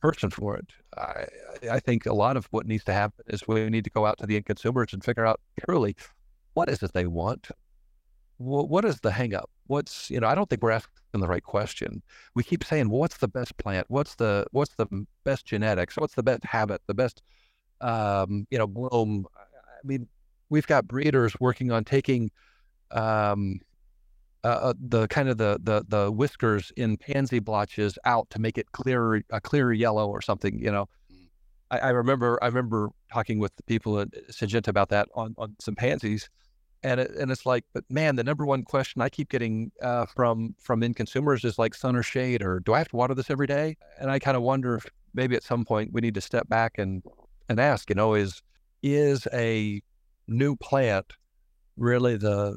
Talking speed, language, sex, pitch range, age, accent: 210 wpm, English, male, 105-130 Hz, 50-69, American